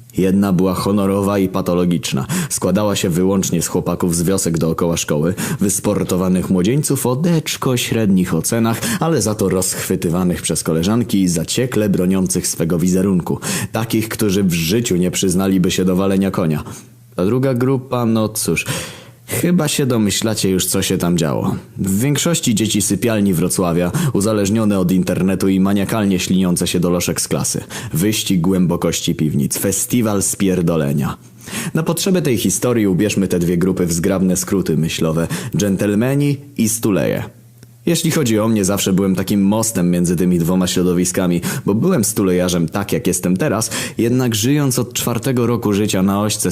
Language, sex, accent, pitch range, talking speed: Polish, male, native, 90-115 Hz, 150 wpm